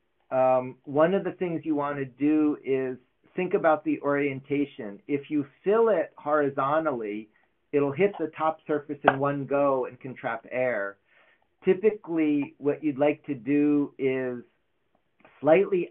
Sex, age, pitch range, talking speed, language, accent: male, 40-59, 130-160 Hz, 145 wpm, English, American